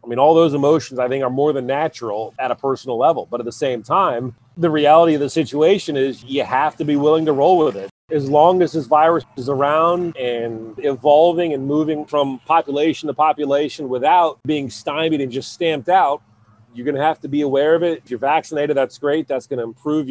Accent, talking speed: American, 225 wpm